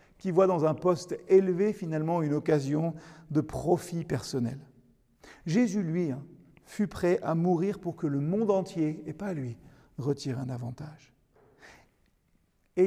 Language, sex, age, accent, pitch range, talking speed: French, male, 50-69, French, 145-190 Hz, 140 wpm